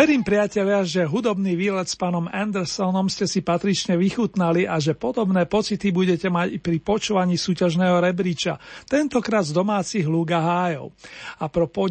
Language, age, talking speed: Slovak, 40-59, 150 wpm